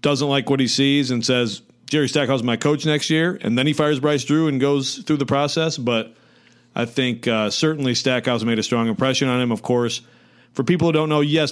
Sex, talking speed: male, 235 wpm